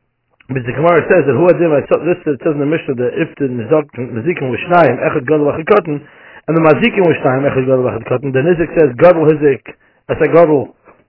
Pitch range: 140-170 Hz